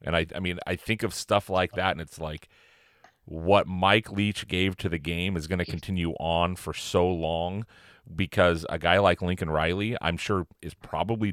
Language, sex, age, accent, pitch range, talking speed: English, male, 30-49, American, 85-105 Hz, 200 wpm